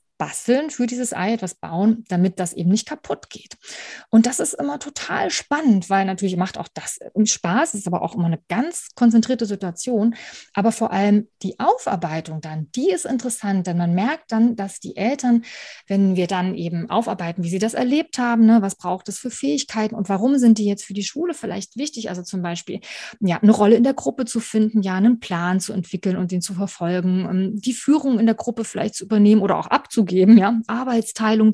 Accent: German